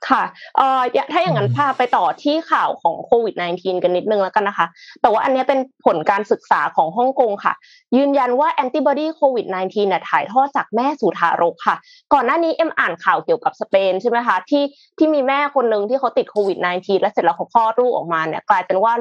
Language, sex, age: Thai, female, 20-39